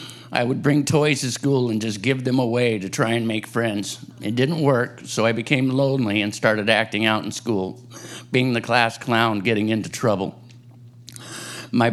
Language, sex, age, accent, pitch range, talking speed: English, male, 50-69, American, 110-125 Hz, 185 wpm